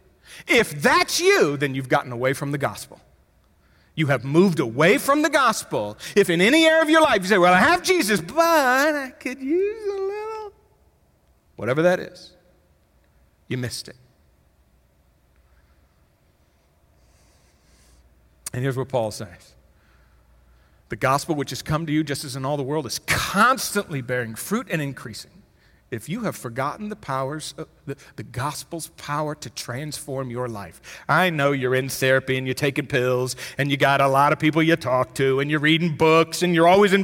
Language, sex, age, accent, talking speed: English, male, 50-69, American, 175 wpm